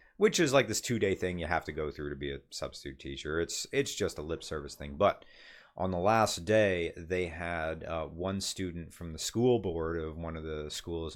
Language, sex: English, male